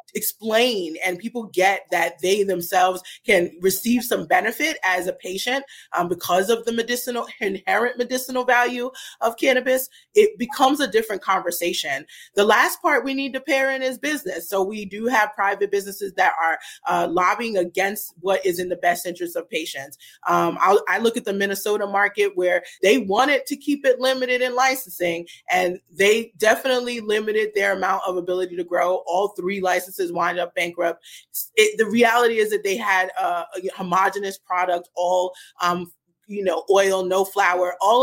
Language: English